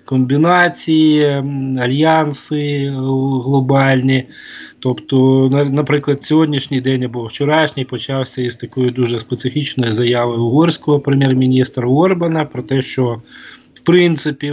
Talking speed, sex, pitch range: 95 wpm, male, 110-140 Hz